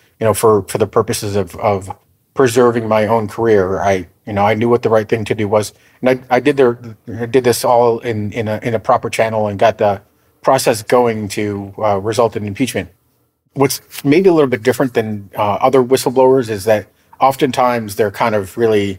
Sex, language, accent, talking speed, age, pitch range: male, English, American, 210 wpm, 30-49, 105-120 Hz